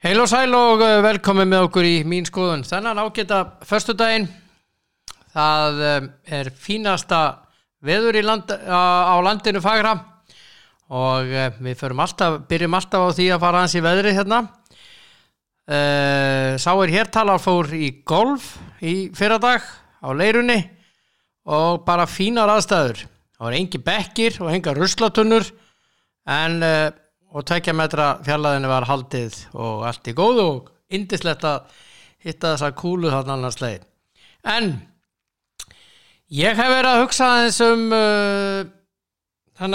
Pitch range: 145-205 Hz